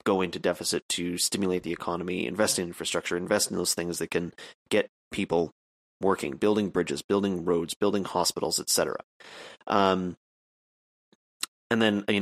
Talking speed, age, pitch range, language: 150 wpm, 30-49, 90-110 Hz, English